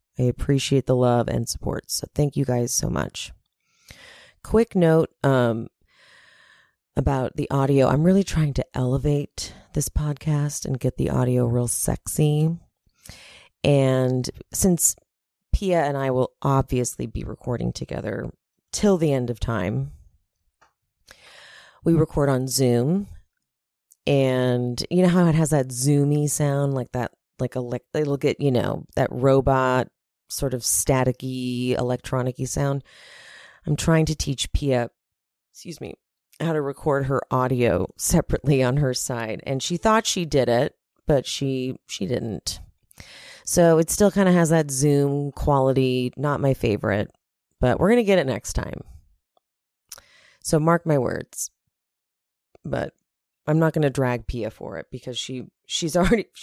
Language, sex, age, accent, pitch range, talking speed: English, female, 30-49, American, 125-150 Hz, 145 wpm